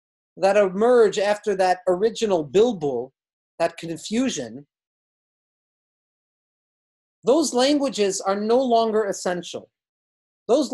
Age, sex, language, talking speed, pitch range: 40-59, male, English, 85 wpm, 175-215 Hz